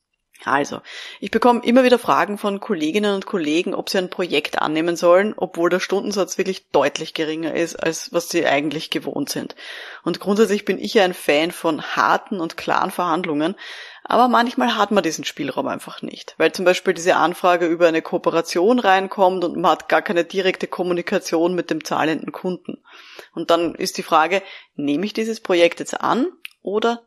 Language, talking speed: German, 180 wpm